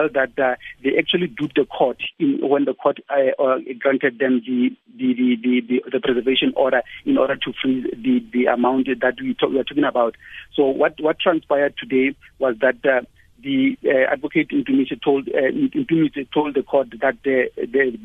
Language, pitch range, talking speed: English, 130-150 Hz, 195 wpm